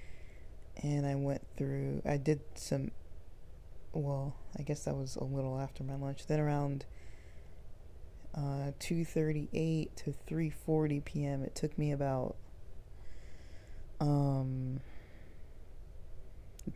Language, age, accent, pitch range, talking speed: English, 20-39, American, 125-150 Hz, 105 wpm